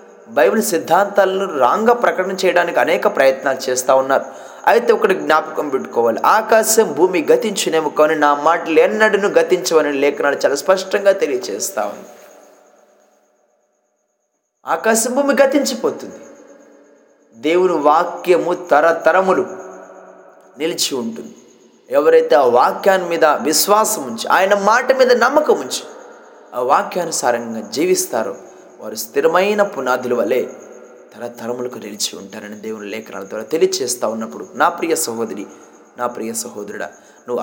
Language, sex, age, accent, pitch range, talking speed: Telugu, male, 20-39, native, 135-225 Hz, 105 wpm